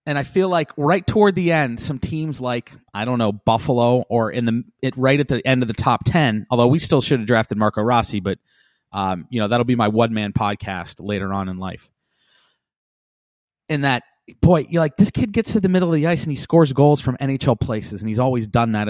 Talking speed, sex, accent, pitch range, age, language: 240 wpm, male, American, 110-145 Hz, 30-49, English